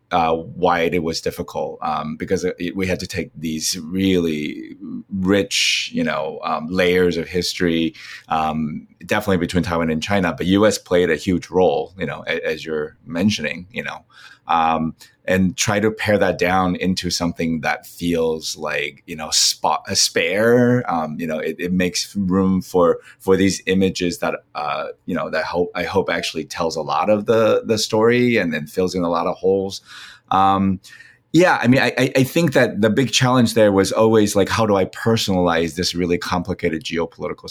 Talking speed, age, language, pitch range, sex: 185 wpm, 30-49, English, 85-105 Hz, male